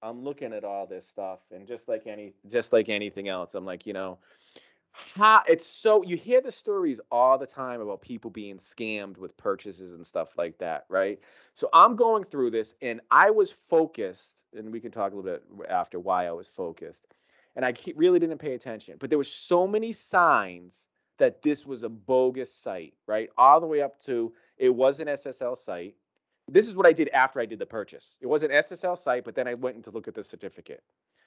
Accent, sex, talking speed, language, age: American, male, 220 wpm, English, 30-49